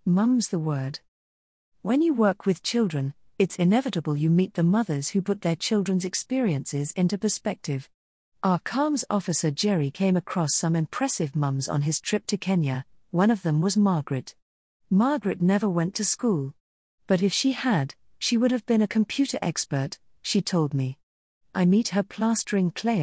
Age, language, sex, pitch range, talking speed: 40-59, English, female, 155-215 Hz, 165 wpm